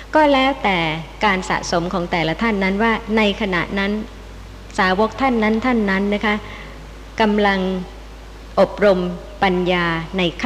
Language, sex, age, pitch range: Thai, male, 60-79, 175-225 Hz